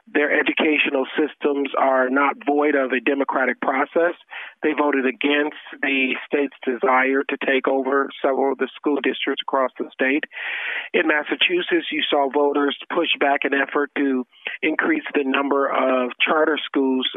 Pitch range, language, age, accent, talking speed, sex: 130-145 Hz, English, 40-59, American, 150 wpm, male